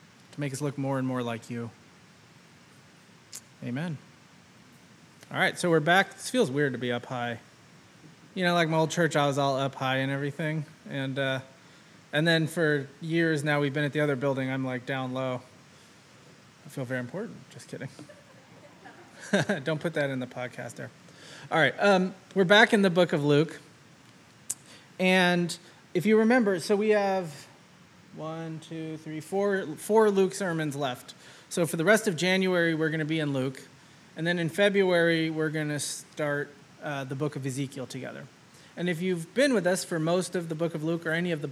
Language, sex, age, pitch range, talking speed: English, male, 20-39, 140-180 Hz, 190 wpm